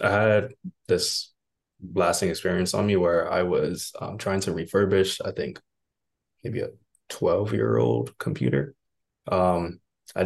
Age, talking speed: 20-39, 140 wpm